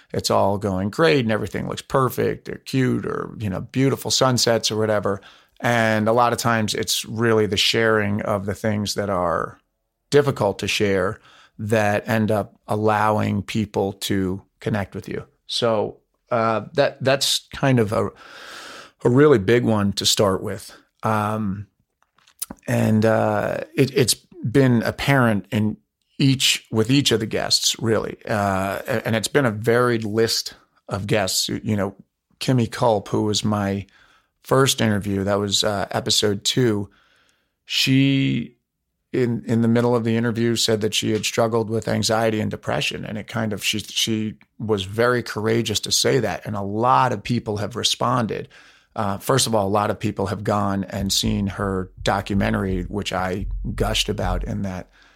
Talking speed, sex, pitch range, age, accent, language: 165 wpm, male, 100-115 Hz, 40-59, American, English